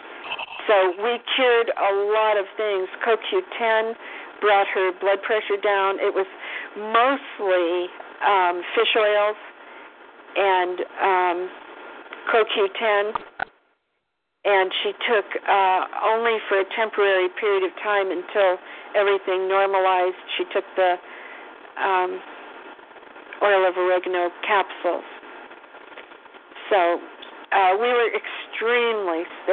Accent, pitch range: American, 190-230 Hz